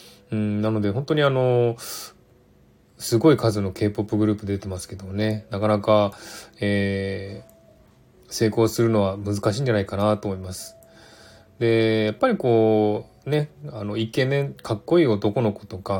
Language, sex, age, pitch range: Japanese, male, 20-39, 100-120 Hz